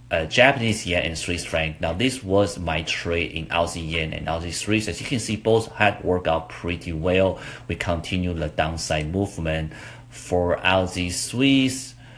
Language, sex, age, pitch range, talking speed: English, male, 30-49, 85-115 Hz, 175 wpm